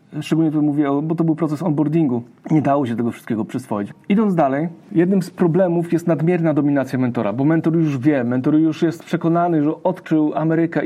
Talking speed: 190 wpm